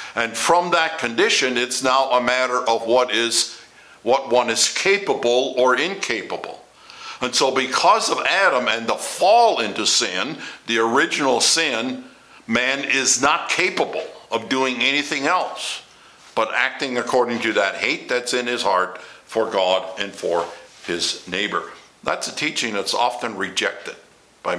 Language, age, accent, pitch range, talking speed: English, 60-79, American, 110-135 Hz, 150 wpm